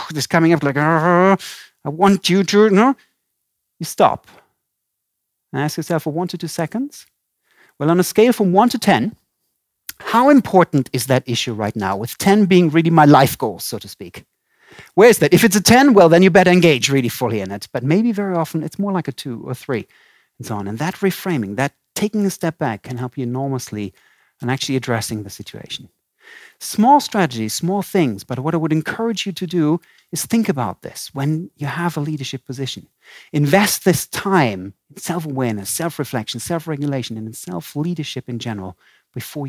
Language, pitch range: Persian, 130-185 Hz